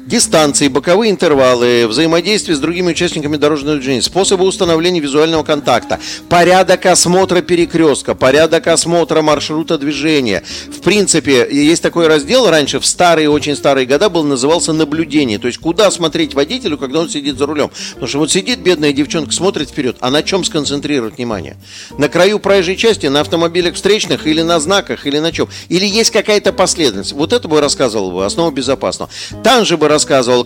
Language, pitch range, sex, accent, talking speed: Russian, 135-175 Hz, male, native, 160 wpm